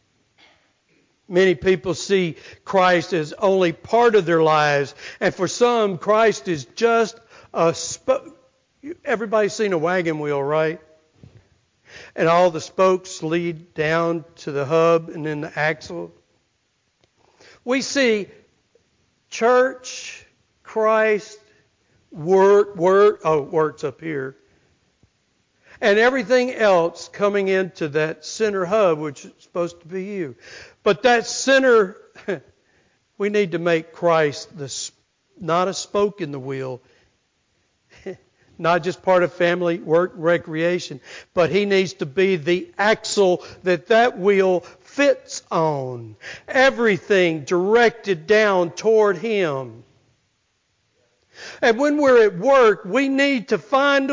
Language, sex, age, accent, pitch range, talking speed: English, male, 60-79, American, 155-215 Hz, 120 wpm